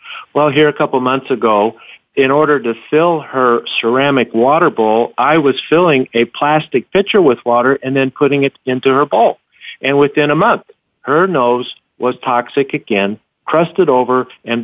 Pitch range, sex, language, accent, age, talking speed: 115-145 Hz, male, English, American, 50-69, 170 wpm